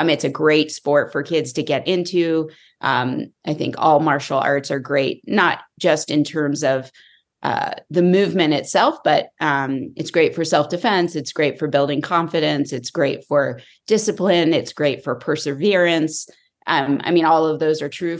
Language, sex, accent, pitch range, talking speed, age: English, female, American, 145-175 Hz, 180 wpm, 30-49